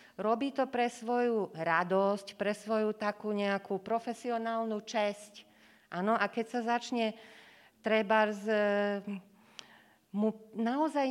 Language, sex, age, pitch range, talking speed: Slovak, female, 40-59, 185-230 Hz, 105 wpm